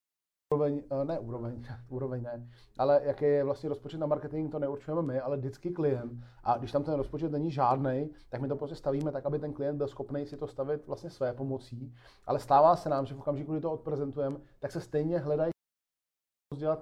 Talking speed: 205 wpm